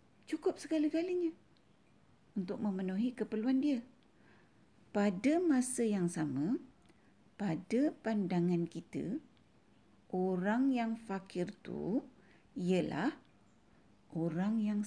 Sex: female